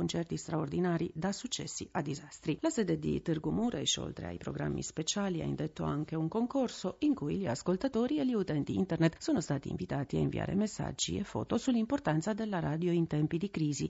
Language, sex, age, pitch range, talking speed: Italian, female, 40-59, 155-190 Hz, 180 wpm